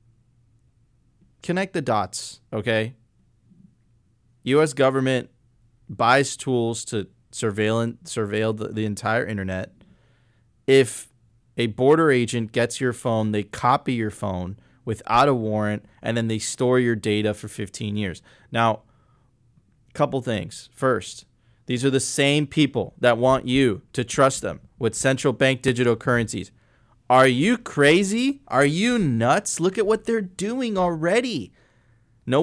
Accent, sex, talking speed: American, male, 135 wpm